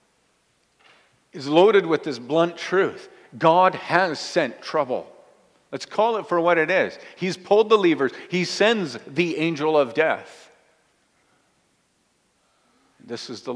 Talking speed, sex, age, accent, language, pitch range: 135 wpm, male, 50-69, American, English, 125-180 Hz